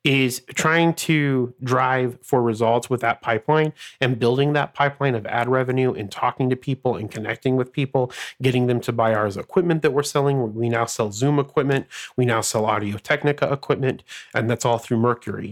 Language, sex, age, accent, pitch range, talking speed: English, male, 30-49, American, 120-155 Hz, 190 wpm